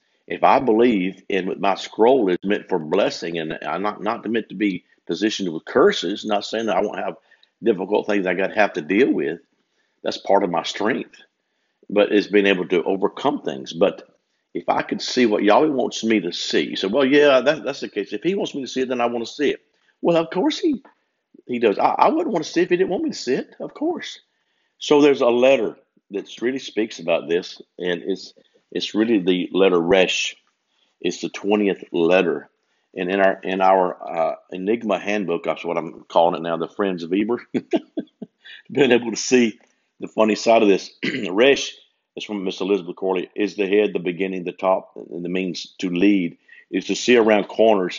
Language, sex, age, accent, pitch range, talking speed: English, male, 50-69, American, 95-120 Hz, 215 wpm